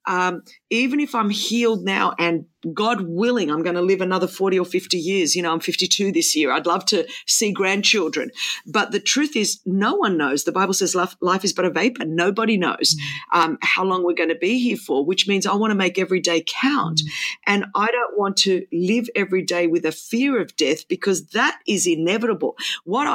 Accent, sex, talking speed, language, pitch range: Australian, female, 215 wpm, English, 170-210 Hz